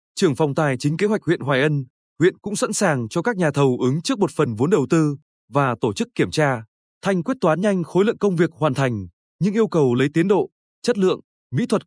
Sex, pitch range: male, 145-200 Hz